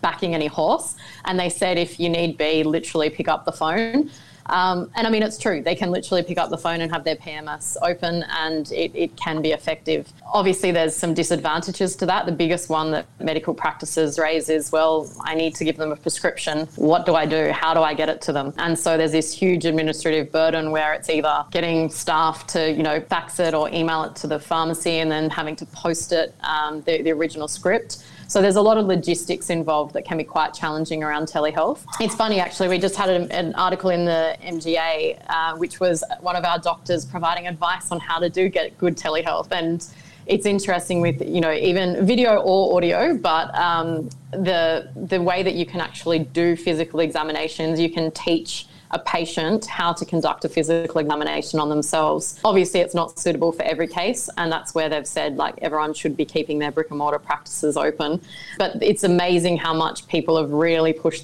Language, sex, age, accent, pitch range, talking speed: English, female, 20-39, Australian, 155-175 Hz, 210 wpm